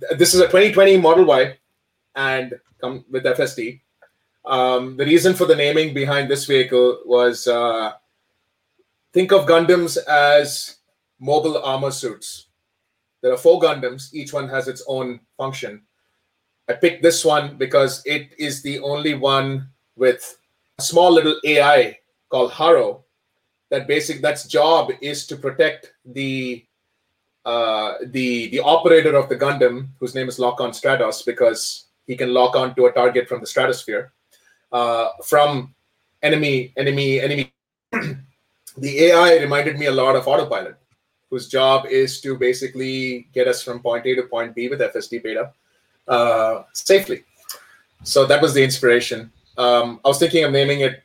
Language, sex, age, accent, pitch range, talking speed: English, male, 30-49, Indian, 125-150 Hz, 155 wpm